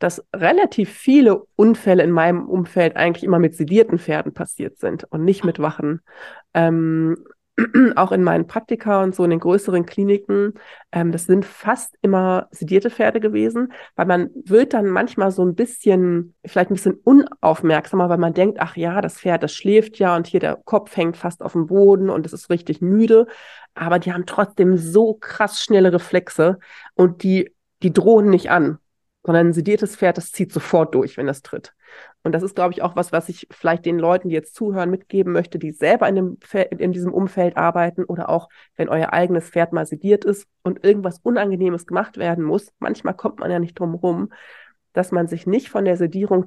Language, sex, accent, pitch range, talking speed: German, female, German, 170-205 Hz, 200 wpm